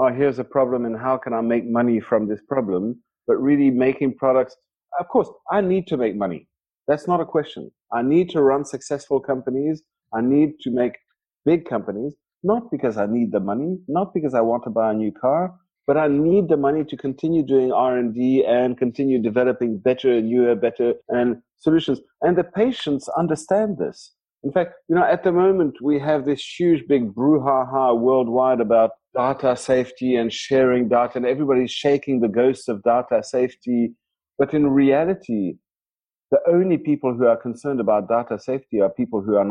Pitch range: 120-145 Hz